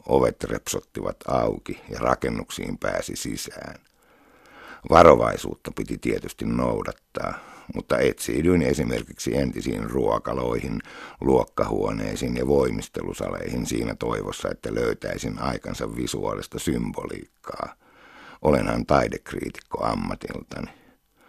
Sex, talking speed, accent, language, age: male, 80 wpm, native, Finnish, 60-79